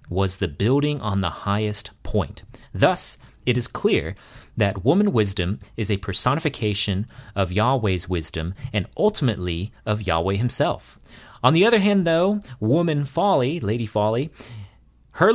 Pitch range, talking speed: 100-125 Hz, 135 wpm